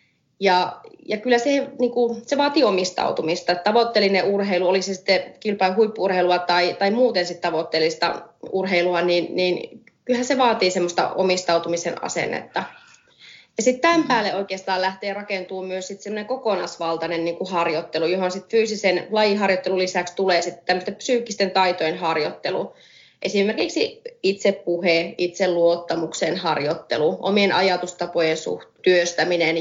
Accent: native